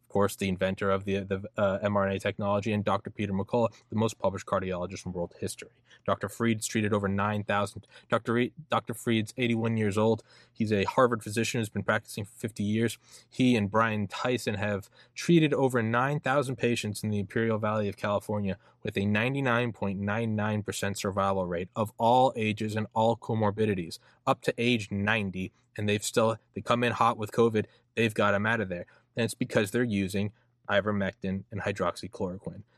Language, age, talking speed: English, 20-39, 175 wpm